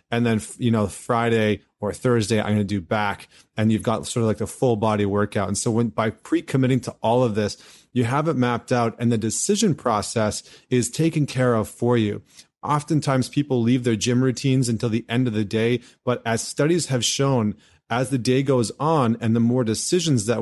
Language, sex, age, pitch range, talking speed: English, male, 30-49, 110-130 Hz, 215 wpm